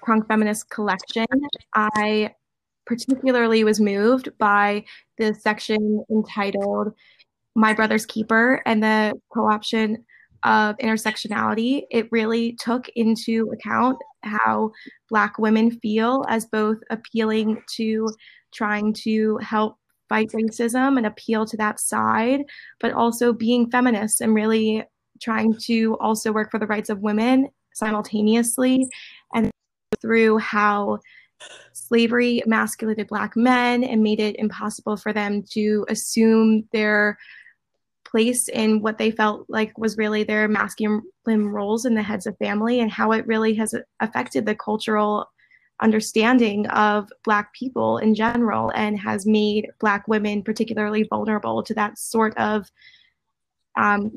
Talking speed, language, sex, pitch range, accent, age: 130 wpm, English, female, 210-230 Hz, American, 20-39